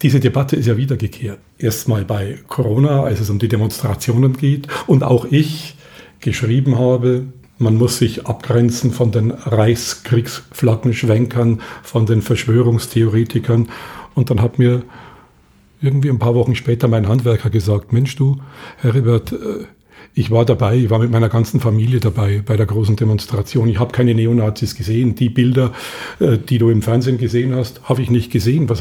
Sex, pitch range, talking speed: male, 115-135 Hz, 160 wpm